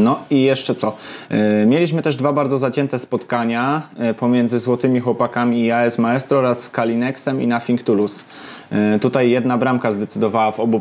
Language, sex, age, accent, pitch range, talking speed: Polish, male, 20-39, native, 110-135 Hz, 150 wpm